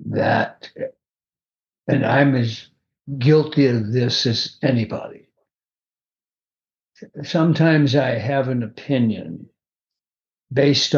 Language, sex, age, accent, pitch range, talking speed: English, male, 60-79, American, 120-145 Hz, 80 wpm